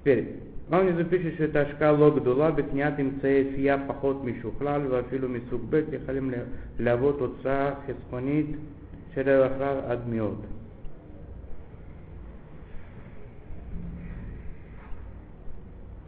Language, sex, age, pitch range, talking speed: Russian, male, 50-69, 105-140 Hz, 80 wpm